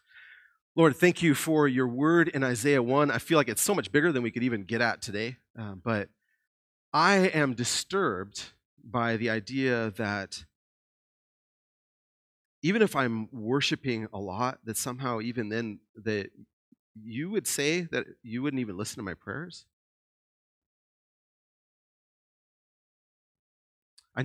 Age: 30-49